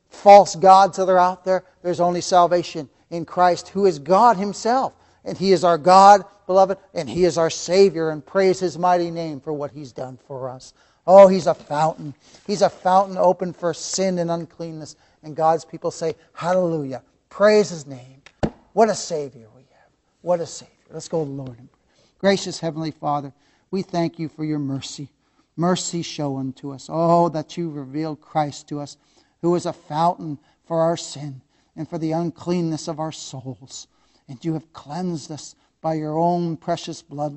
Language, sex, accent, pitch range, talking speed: English, male, American, 145-175 Hz, 185 wpm